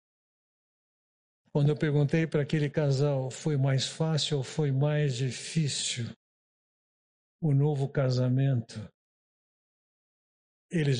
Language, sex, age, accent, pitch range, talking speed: Portuguese, male, 60-79, Brazilian, 130-160 Hz, 95 wpm